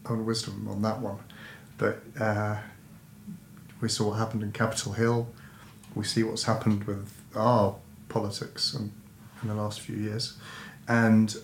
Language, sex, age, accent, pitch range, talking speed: English, male, 40-59, British, 105-115 Hz, 145 wpm